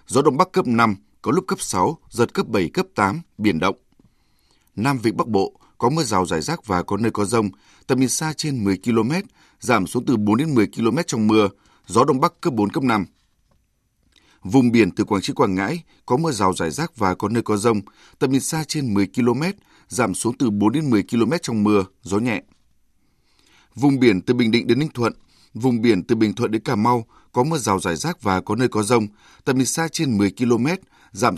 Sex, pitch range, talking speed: male, 105-135 Hz, 230 wpm